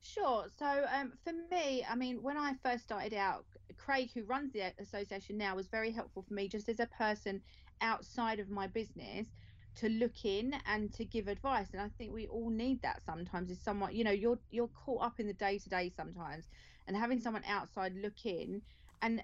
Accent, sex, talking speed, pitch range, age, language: British, female, 210 wpm, 195-245 Hz, 30-49, English